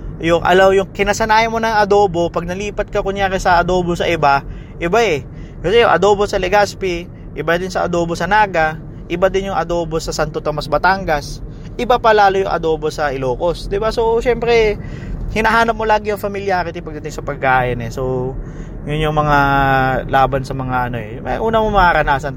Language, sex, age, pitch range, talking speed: English, male, 20-39, 135-175 Hz, 180 wpm